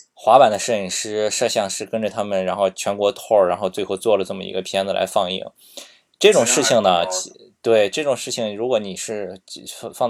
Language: Chinese